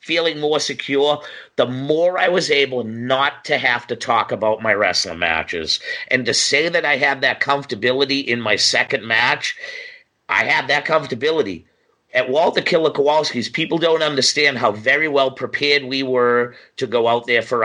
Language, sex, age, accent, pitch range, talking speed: English, male, 50-69, American, 125-160 Hz, 170 wpm